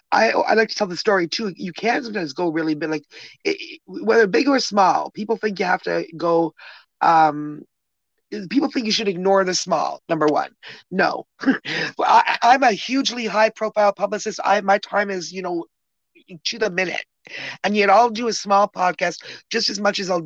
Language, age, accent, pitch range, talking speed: English, 30-49, American, 165-210 Hz, 195 wpm